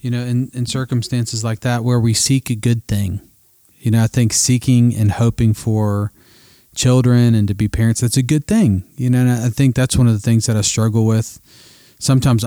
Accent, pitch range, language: American, 105-120 Hz, English